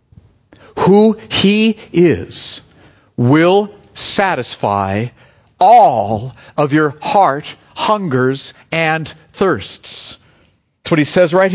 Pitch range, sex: 155-240 Hz, male